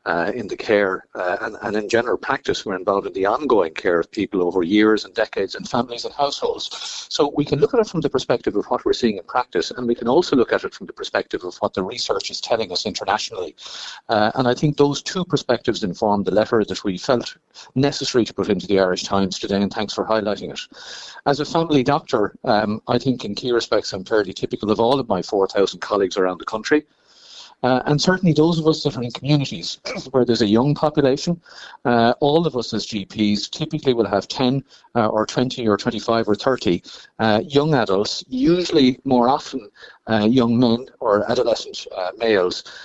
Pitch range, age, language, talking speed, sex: 110-145 Hz, 50-69, English, 215 wpm, male